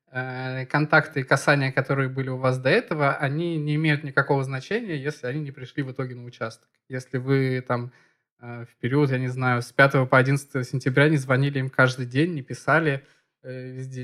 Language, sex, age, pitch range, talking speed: Russian, male, 20-39, 125-150 Hz, 185 wpm